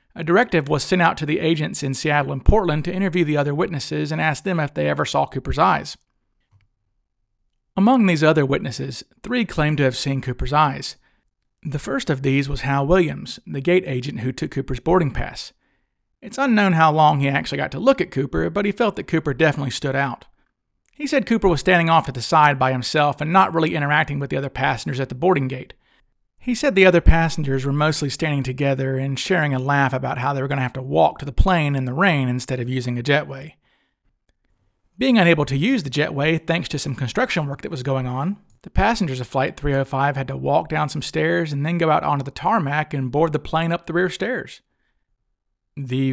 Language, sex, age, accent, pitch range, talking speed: English, male, 40-59, American, 135-170 Hz, 220 wpm